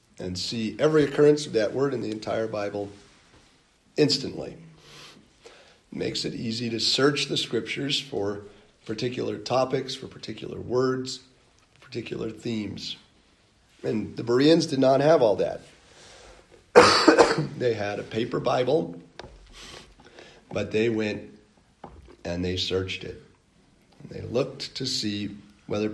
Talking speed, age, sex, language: 120 wpm, 40-59, male, English